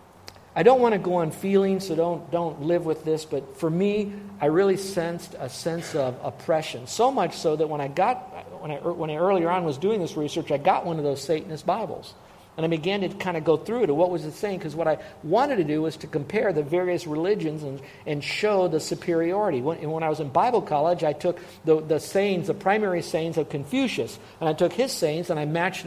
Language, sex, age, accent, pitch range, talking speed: English, male, 50-69, American, 155-195 Hz, 235 wpm